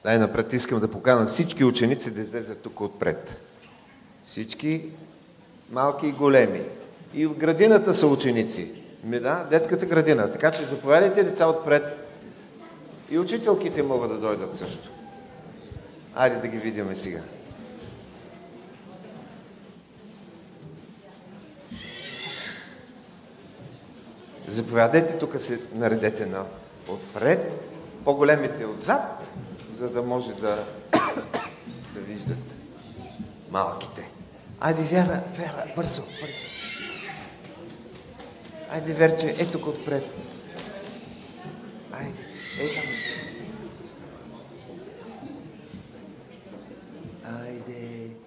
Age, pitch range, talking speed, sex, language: 40-59, 115-160 Hz, 85 wpm, male, English